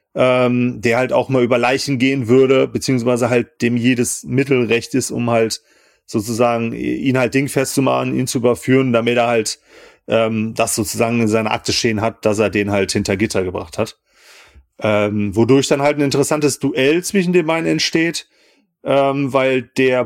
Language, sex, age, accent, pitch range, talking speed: German, male, 30-49, German, 120-150 Hz, 175 wpm